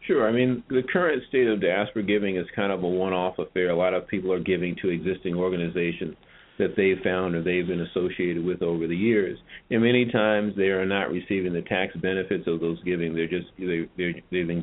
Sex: male